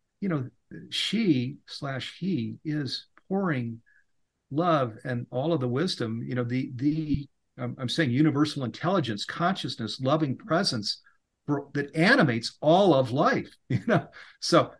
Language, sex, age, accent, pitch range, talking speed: English, male, 50-69, American, 125-165 Hz, 135 wpm